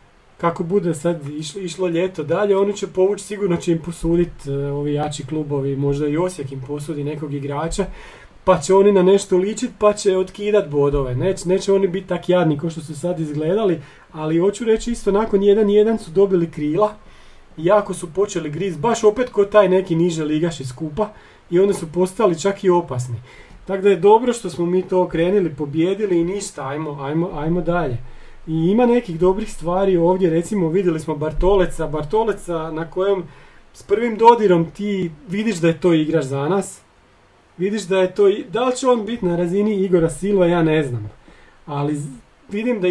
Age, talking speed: 40-59, 185 wpm